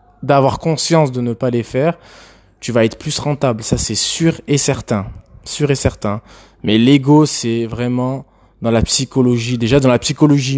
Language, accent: French, French